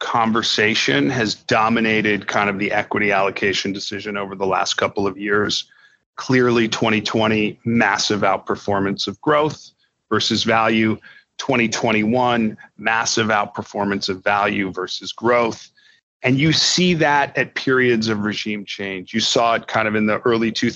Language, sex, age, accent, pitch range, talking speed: English, male, 40-59, American, 105-125 Hz, 135 wpm